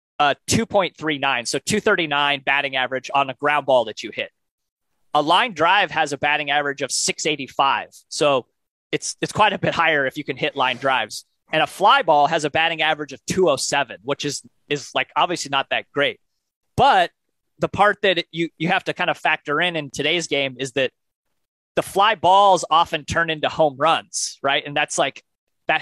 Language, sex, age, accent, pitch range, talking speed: English, male, 30-49, American, 135-160 Hz, 195 wpm